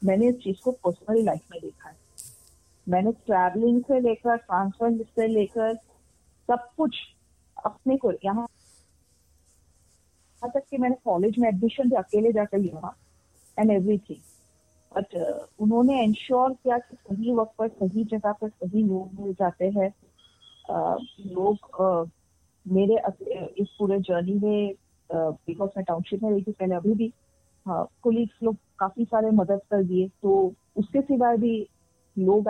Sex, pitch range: female, 185-235 Hz